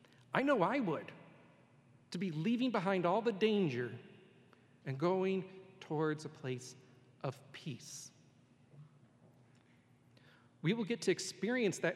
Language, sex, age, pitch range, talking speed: English, male, 40-59, 130-175 Hz, 120 wpm